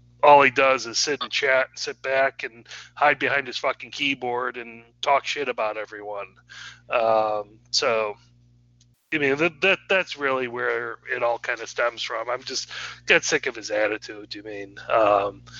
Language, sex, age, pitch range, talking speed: English, male, 30-49, 105-125 Hz, 180 wpm